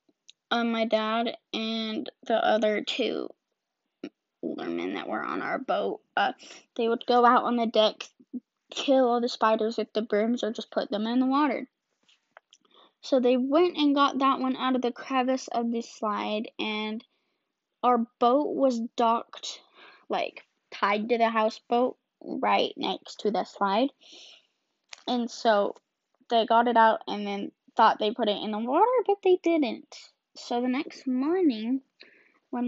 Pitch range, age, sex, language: 220-275 Hz, 10-29, female, English